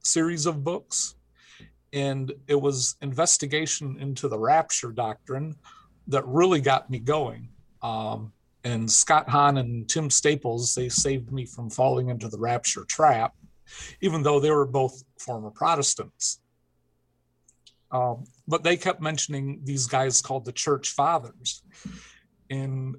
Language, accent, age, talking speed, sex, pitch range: English, American, 50-69, 135 wpm, male, 120-145 Hz